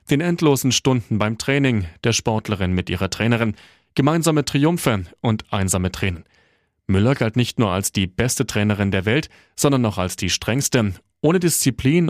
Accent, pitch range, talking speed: German, 100-135 Hz, 160 wpm